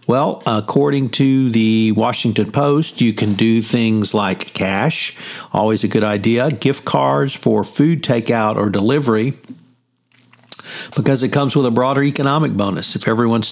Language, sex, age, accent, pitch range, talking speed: English, male, 50-69, American, 110-135 Hz, 145 wpm